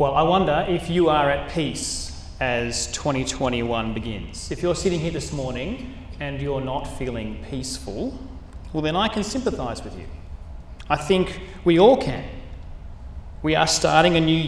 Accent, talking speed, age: Australian, 160 wpm, 30-49